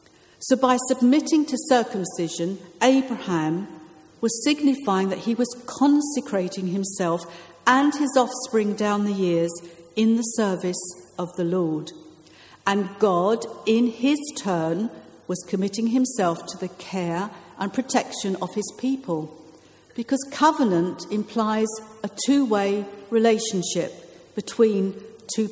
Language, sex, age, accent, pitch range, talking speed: English, female, 50-69, British, 180-245 Hz, 115 wpm